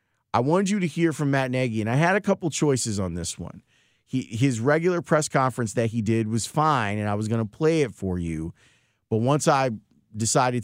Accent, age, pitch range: American, 30-49, 110-140 Hz